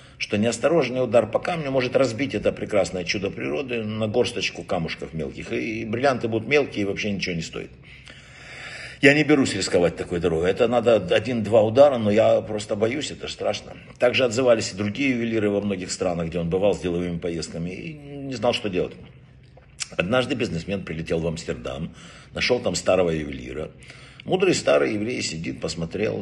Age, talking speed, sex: 60-79, 165 wpm, male